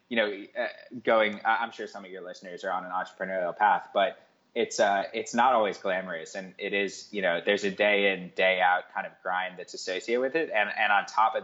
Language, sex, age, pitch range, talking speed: English, male, 20-39, 95-125 Hz, 235 wpm